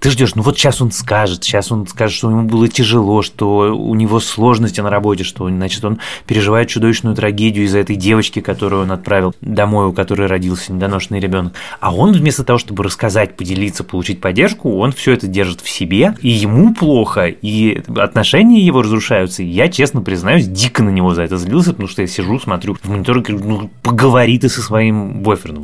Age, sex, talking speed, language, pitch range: 20-39, male, 195 wpm, Russian, 95-125 Hz